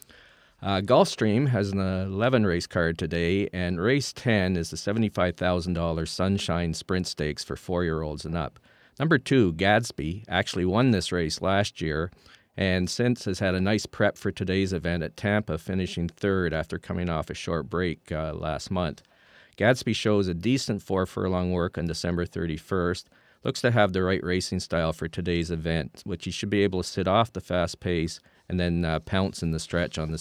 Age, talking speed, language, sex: 50-69, 185 wpm, English, male